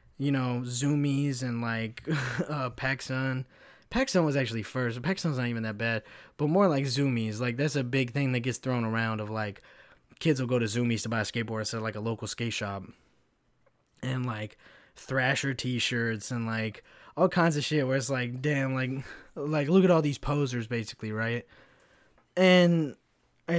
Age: 20-39